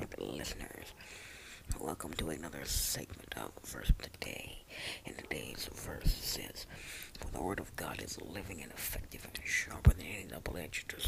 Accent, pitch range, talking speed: American, 80-95 Hz, 150 wpm